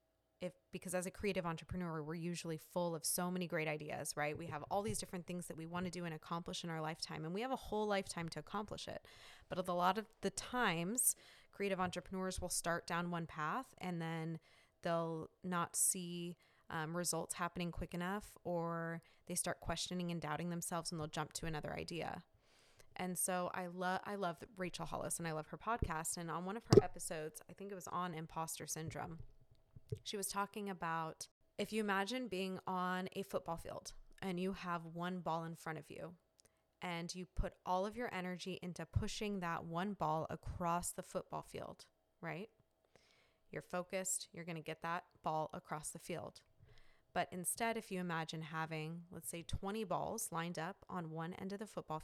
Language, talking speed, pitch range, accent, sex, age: English, 195 wpm, 160-185 Hz, American, female, 20-39